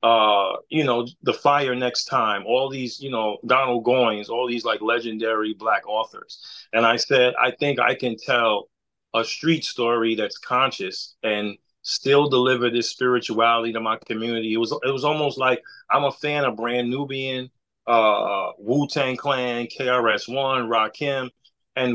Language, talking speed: English, 160 wpm